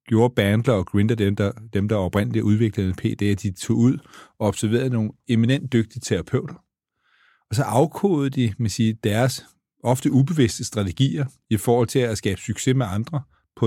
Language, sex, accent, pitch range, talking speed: Danish, male, native, 110-130 Hz, 180 wpm